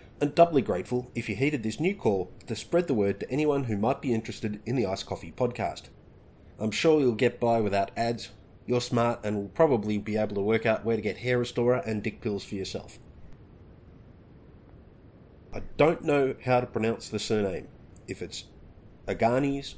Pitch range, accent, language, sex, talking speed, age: 100-125 Hz, Australian, English, male, 190 wpm, 30-49